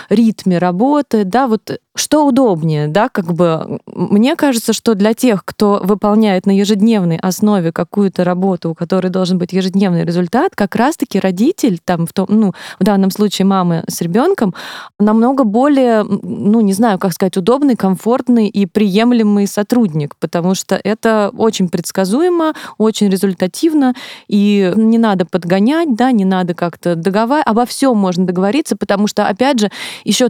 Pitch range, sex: 185-230 Hz, female